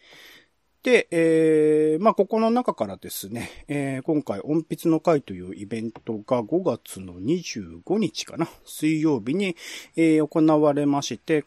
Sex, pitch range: male, 115-180 Hz